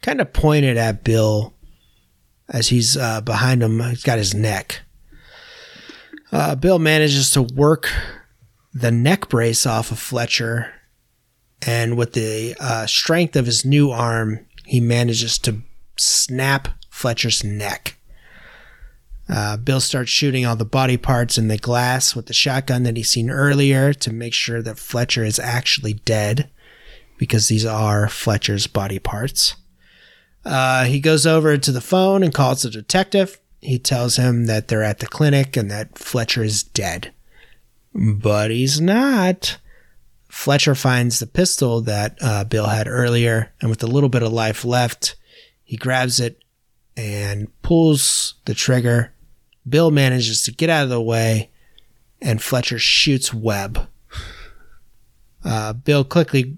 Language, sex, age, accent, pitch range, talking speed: English, male, 30-49, American, 110-135 Hz, 145 wpm